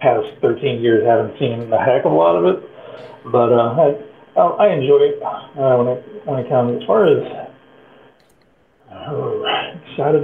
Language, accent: English, American